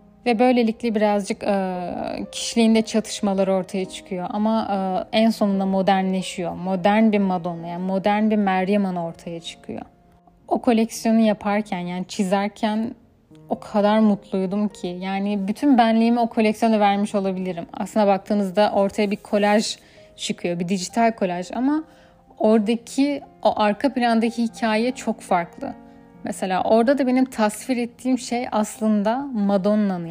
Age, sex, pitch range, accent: 10-29, female, 195-225 Hz, native